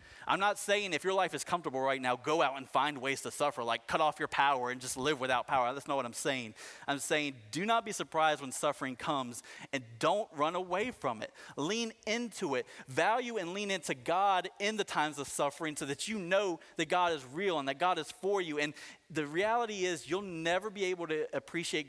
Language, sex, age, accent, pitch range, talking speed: English, male, 30-49, American, 130-170 Hz, 230 wpm